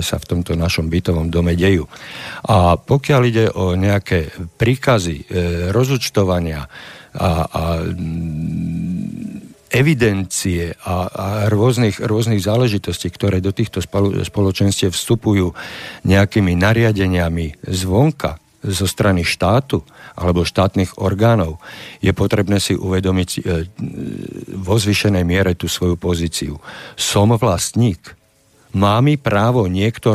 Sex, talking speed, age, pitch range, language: male, 105 wpm, 50-69, 90-110 Hz, Slovak